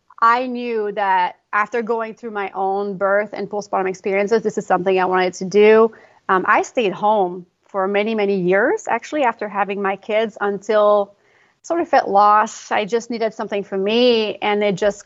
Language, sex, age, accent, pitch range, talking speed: English, female, 30-49, American, 195-225 Hz, 185 wpm